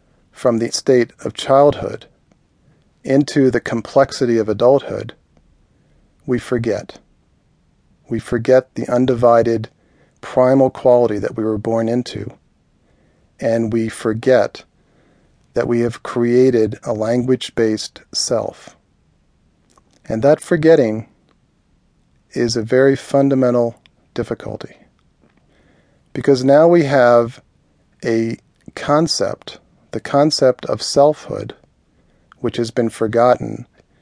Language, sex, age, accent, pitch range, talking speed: English, male, 40-59, American, 110-130 Hz, 100 wpm